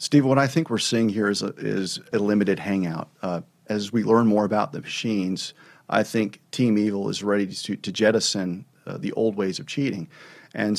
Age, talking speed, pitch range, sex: 40-59, 200 wpm, 105-125 Hz, male